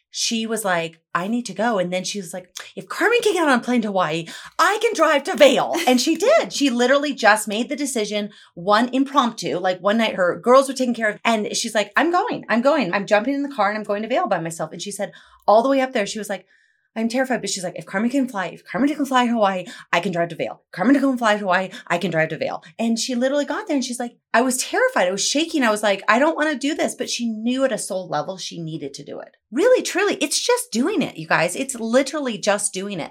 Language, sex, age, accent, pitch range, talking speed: English, female, 30-49, American, 195-270 Hz, 280 wpm